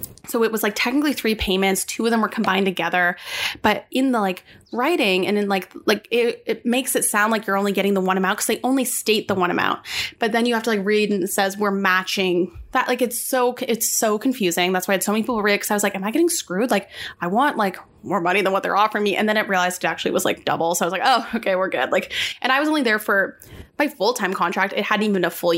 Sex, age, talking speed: female, 10-29, 285 wpm